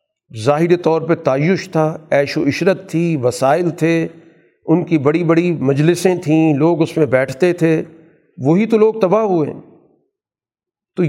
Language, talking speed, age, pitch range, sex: Urdu, 150 wpm, 50-69, 145-185 Hz, male